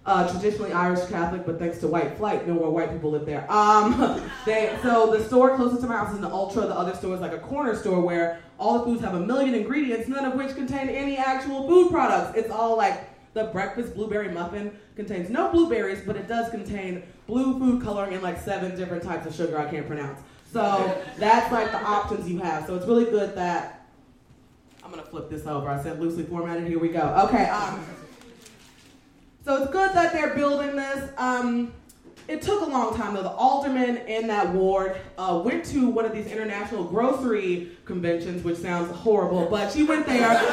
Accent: American